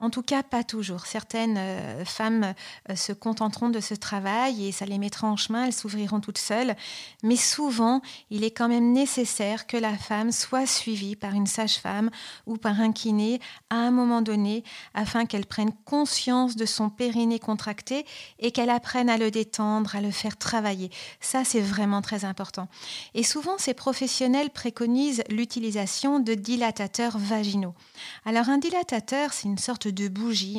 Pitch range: 205-250 Hz